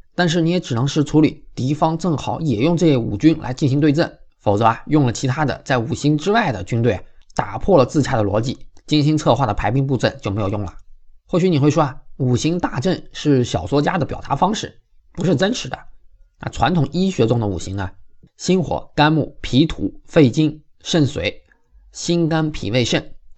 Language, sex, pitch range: Chinese, male, 115-155 Hz